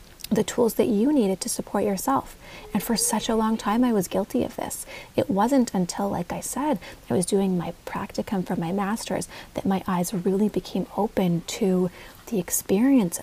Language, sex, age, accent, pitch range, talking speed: English, female, 30-49, American, 180-215 Hz, 190 wpm